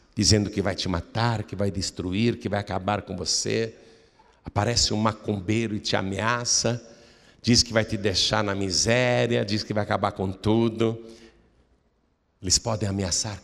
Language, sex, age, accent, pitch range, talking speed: Portuguese, male, 60-79, Brazilian, 100-120 Hz, 155 wpm